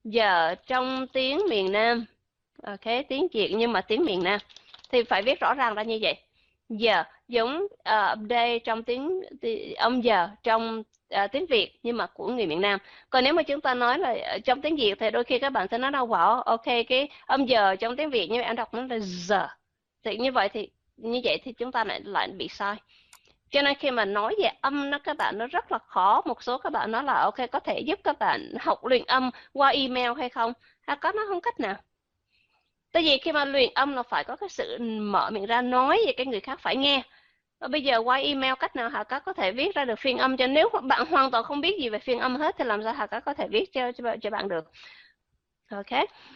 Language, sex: Vietnamese, female